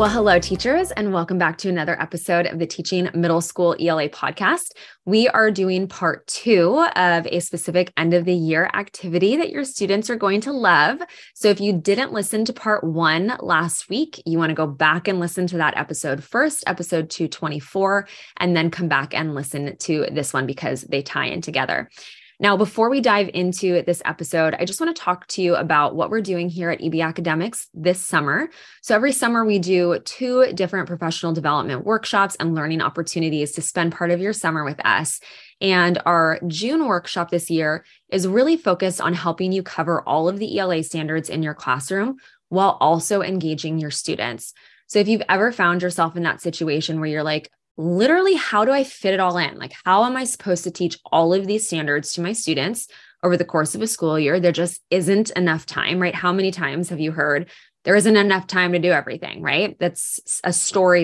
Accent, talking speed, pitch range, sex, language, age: American, 205 wpm, 165-200 Hz, female, English, 20-39